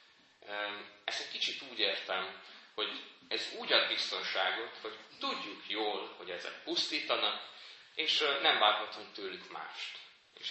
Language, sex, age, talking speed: Hungarian, male, 30-49, 125 wpm